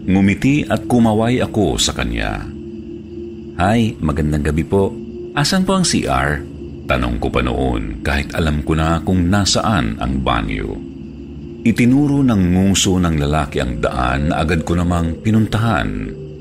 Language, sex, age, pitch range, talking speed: Filipino, male, 50-69, 70-110 Hz, 140 wpm